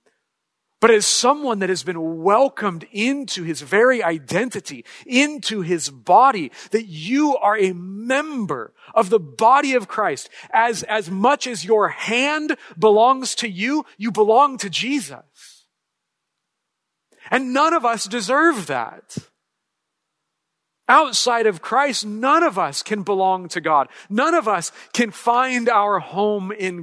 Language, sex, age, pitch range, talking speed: English, male, 40-59, 185-245 Hz, 135 wpm